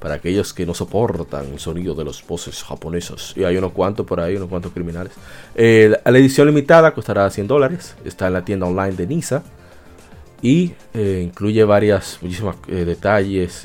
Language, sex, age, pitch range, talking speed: Spanish, male, 30-49, 90-120 Hz, 180 wpm